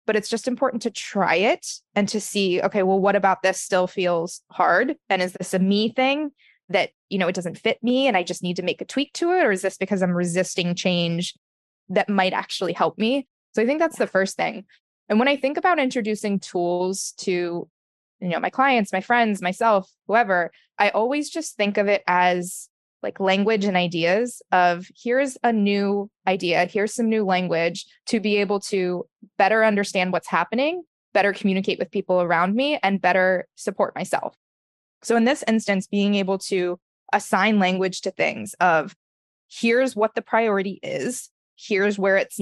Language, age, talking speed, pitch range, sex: English, 20-39, 190 wpm, 180-225 Hz, female